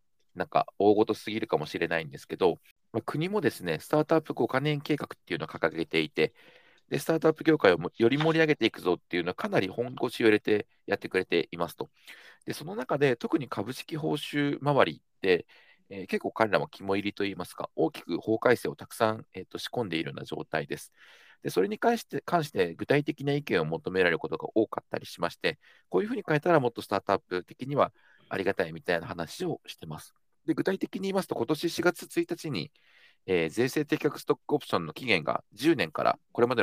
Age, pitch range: 40-59, 110-155 Hz